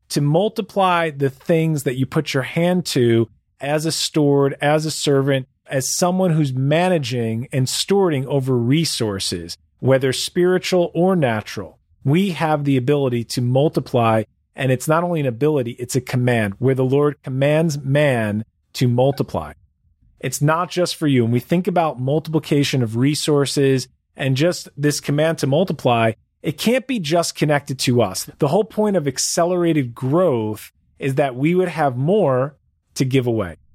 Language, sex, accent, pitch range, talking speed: English, male, American, 125-165 Hz, 160 wpm